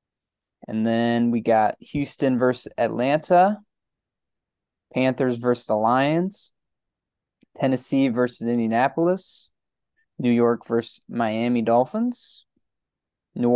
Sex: male